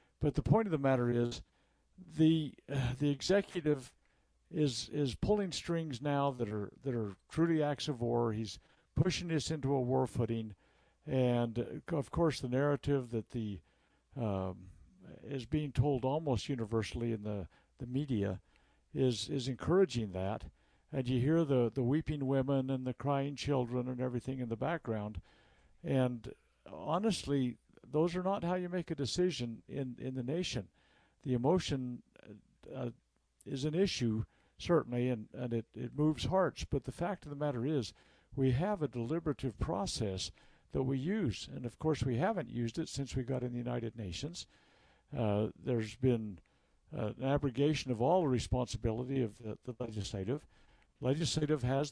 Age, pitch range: 60-79, 120-150 Hz